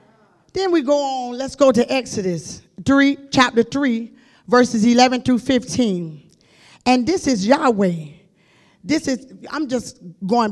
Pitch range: 200-285 Hz